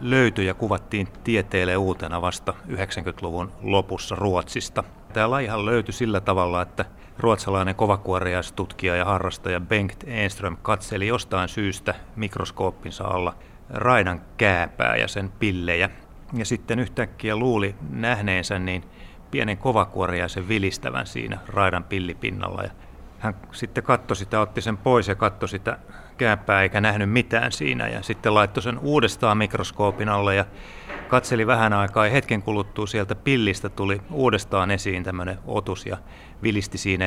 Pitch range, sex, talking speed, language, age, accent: 95-110 Hz, male, 135 wpm, Finnish, 30-49, native